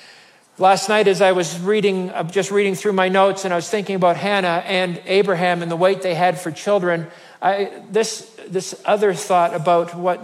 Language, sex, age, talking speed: English, male, 50-69, 195 wpm